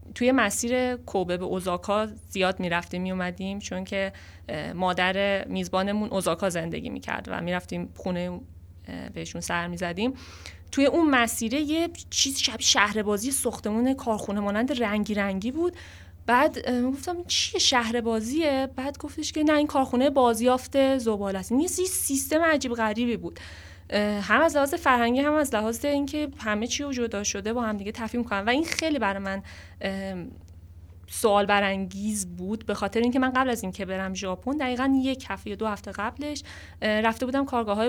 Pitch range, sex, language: 190-245 Hz, female, Persian